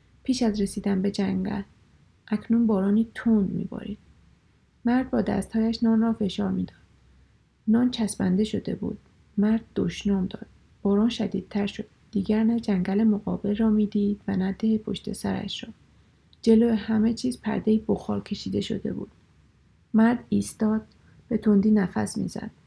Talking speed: 140 wpm